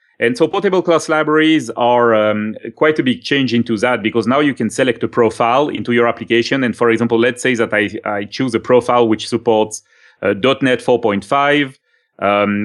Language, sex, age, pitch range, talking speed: English, male, 30-49, 110-130 Hz, 190 wpm